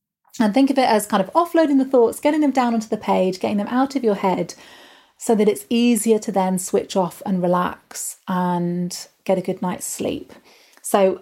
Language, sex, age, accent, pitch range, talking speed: English, female, 30-49, British, 190-240 Hz, 210 wpm